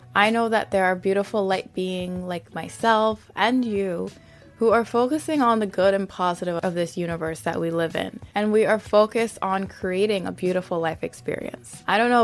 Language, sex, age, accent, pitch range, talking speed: English, female, 20-39, American, 180-215 Hz, 195 wpm